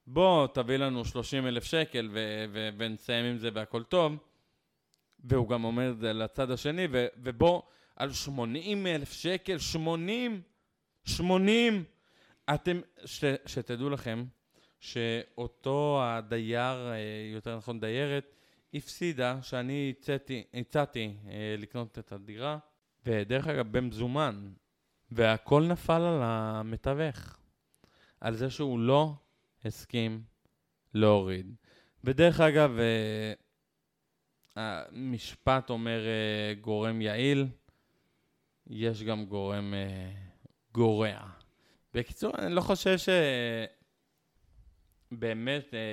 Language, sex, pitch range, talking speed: Hebrew, male, 110-145 Hz, 95 wpm